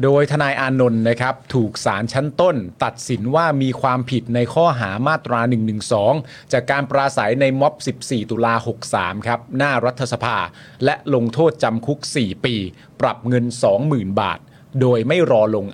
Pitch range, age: 120-150 Hz, 30-49